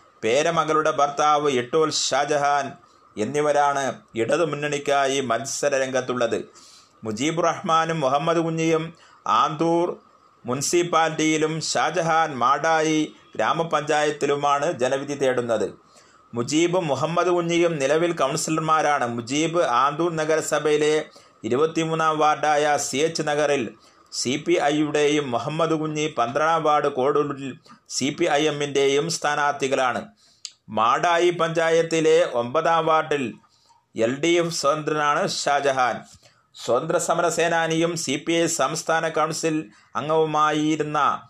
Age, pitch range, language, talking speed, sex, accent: 30-49, 140-160 Hz, Malayalam, 80 wpm, male, native